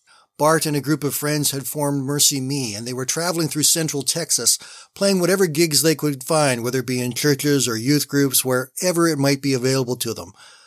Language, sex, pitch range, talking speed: English, male, 130-160 Hz, 215 wpm